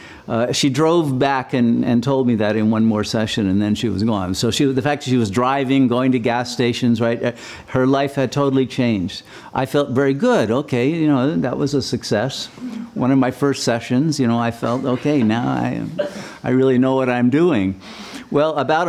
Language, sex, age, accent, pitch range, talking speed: English, male, 50-69, American, 120-140 Hz, 215 wpm